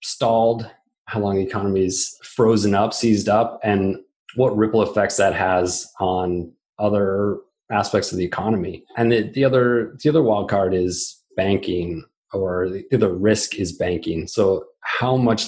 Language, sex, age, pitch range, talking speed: English, male, 30-49, 95-110 Hz, 155 wpm